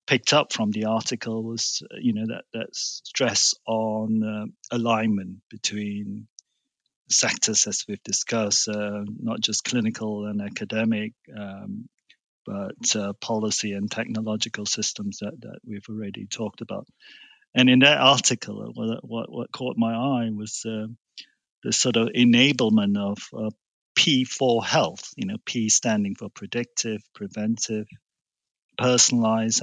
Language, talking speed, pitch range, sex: English, 135 wpm, 110-125 Hz, male